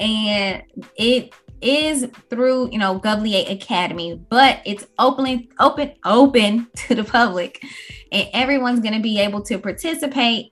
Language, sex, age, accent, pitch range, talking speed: English, female, 20-39, American, 200-245 Hz, 135 wpm